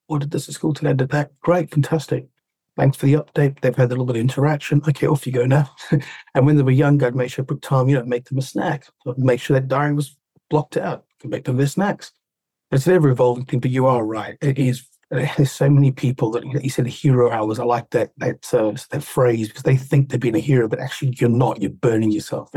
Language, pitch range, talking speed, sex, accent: English, 120-145 Hz, 260 wpm, male, British